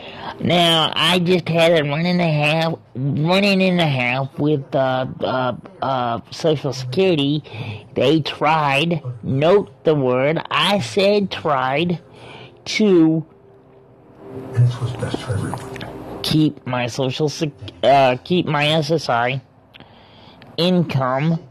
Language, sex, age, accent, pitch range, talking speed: English, male, 40-59, American, 125-175 Hz, 105 wpm